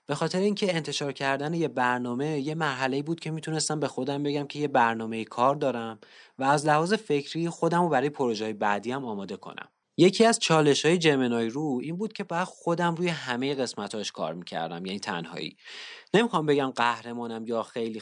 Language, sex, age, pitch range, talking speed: Persian, male, 30-49, 120-165 Hz, 180 wpm